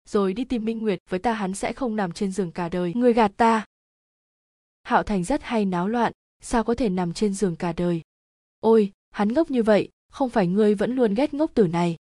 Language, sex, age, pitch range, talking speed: Vietnamese, female, 20-39, 185-230 Hz, 230 wpm